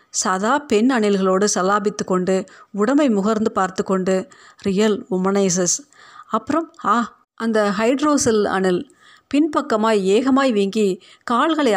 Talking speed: 100 wpm